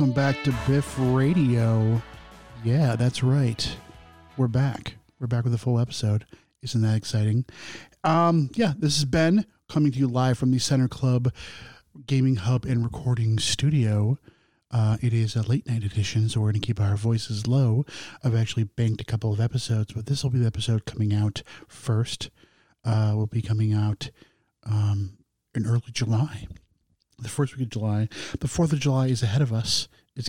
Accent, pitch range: American, 110-140 Hz